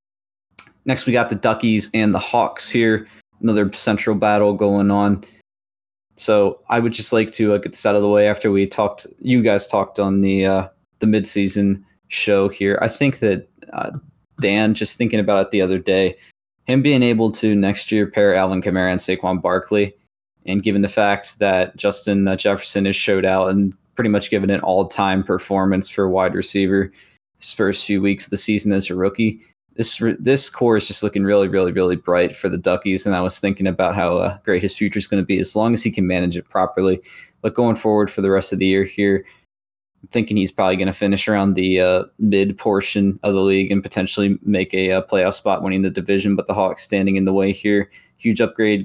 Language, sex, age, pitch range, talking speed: English, male, 20-39, 95-105 Hz, 215 wpm